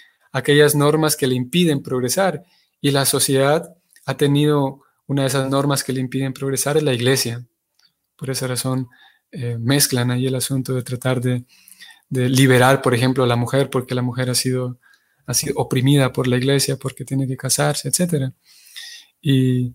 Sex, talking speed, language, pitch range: male, 175 wpm, Spanish, 130-160 Hz